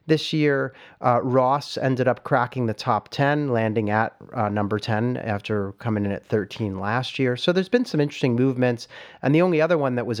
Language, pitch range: English, 115-145 Hz